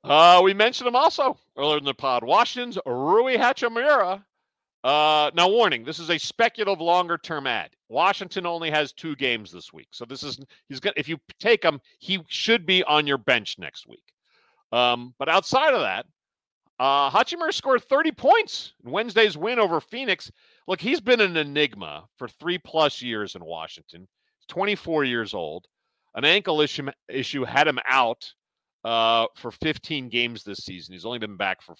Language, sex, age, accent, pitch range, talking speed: English, male, 50-69, American, 120-195 Hz, 175 wpm